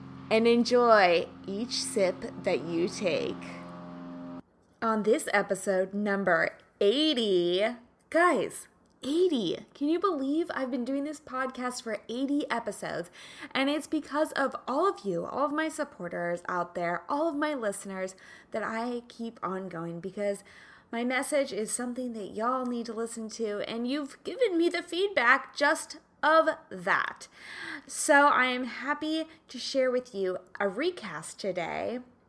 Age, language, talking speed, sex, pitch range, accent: 20-39, English, 145 wpm, female, 205-285 Hz, American